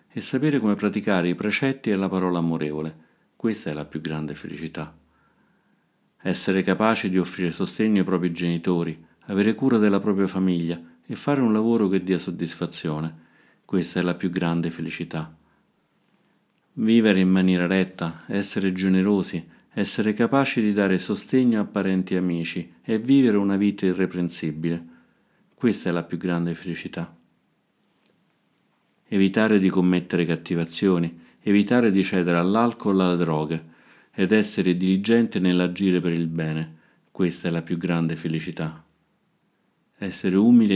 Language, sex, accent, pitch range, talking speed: Italian, male, native, 85-100 Hz, 140 wpm